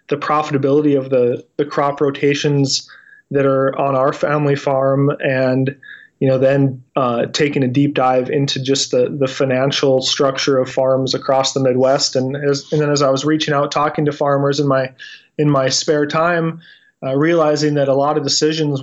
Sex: male